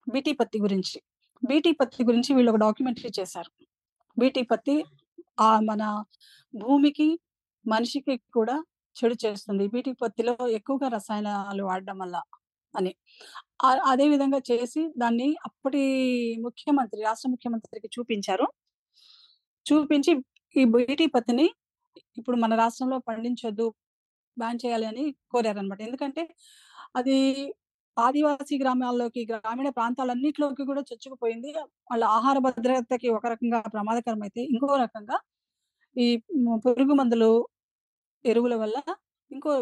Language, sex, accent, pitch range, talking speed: Telugu, female, native, 225-275 Hz, 105 wpm